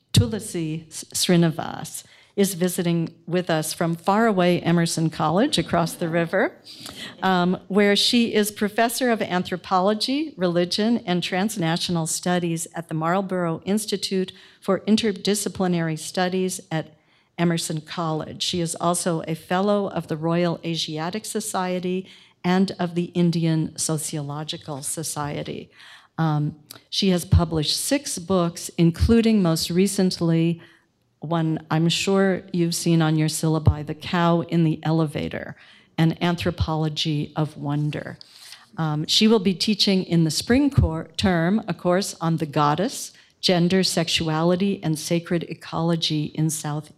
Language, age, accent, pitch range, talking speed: English, 50-69, American, 160-190 Hz, 125 wpm